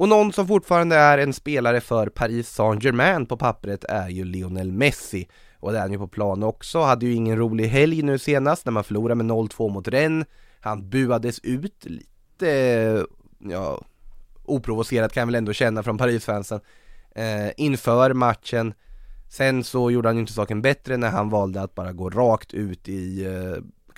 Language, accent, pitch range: Swedish, native, 100-130 Hz